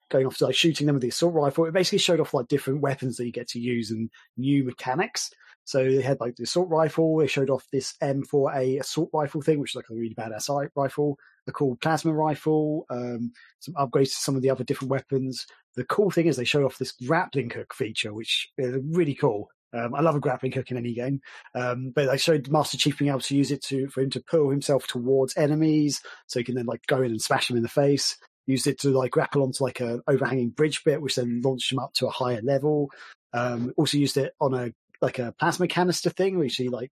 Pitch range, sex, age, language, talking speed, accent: 125-150 Hz, male, 30-49, English, 245 wpm, British